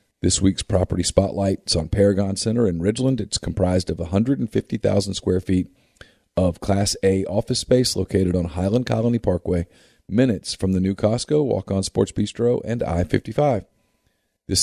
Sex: male